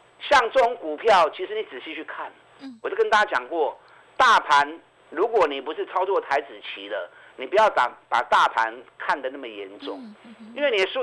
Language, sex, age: Chinese, male, 50-69